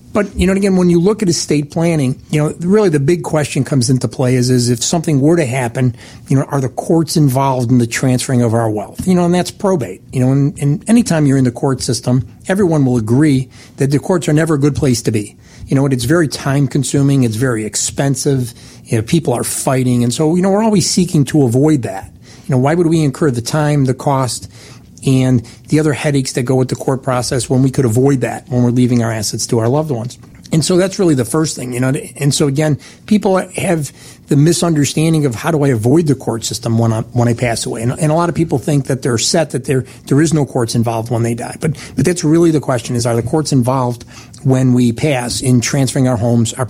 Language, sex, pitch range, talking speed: English, male, 120-155 Hz, 250 wpm